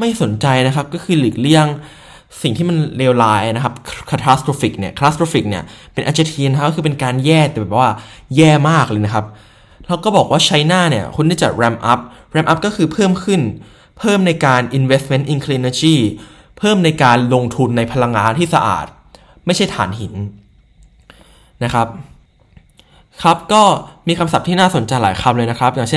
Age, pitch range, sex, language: 20-39, 125-160 Hz, male, Thai